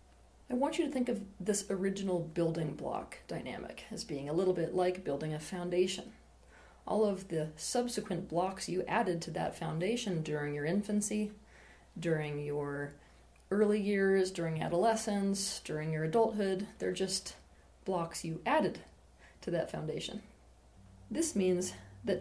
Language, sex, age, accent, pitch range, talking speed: English, female, 30-49, American, 155-200 Hz, 145 wpm